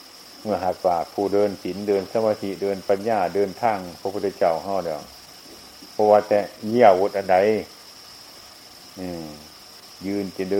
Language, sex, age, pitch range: Chinese, male, 60-79, 90-100 Hz